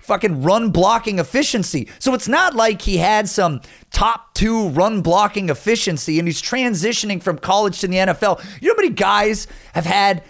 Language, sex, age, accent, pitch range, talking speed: English, male, 30-49, American, 170-225 Hz, 180 wpm